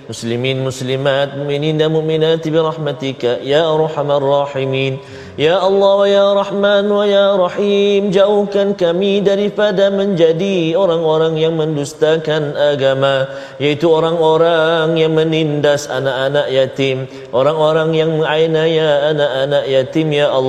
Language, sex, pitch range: Malayalam, male, 135-160 Hz